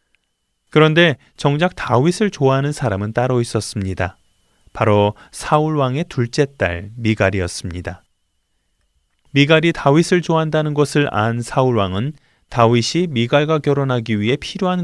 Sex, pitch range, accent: male, 100-150 Hz, native